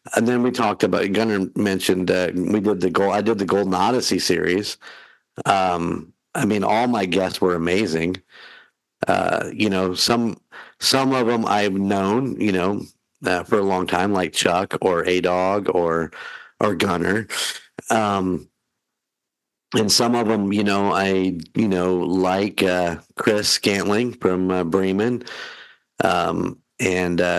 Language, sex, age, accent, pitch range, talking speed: English, male, 50-69, American, 90-100 Hz, 150 wpm